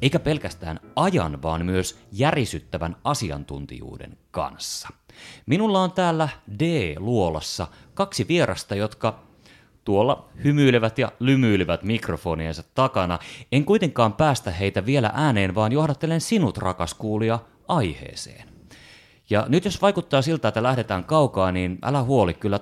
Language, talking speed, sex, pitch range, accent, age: Finnish, 120 wpm, male, 90-130 Hz, native, 30-49